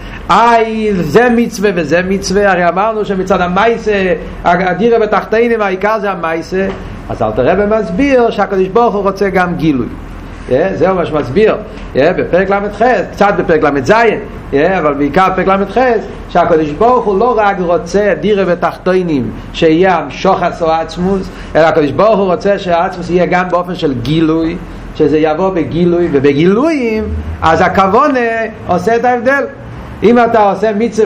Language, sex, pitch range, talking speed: Hebrew, male, 170-230 Hz, 140 wpm